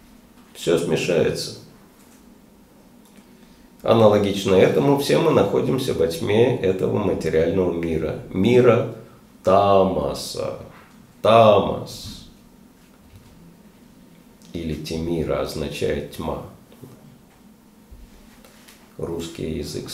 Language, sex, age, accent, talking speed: Russian, male, 50-69, native, 65 wpm